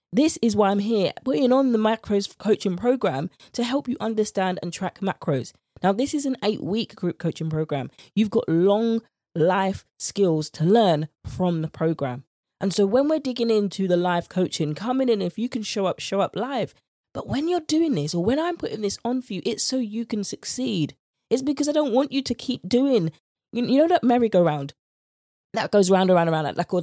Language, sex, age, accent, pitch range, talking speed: English, female, 20-39, British, 160-230 Hz, 210 wpm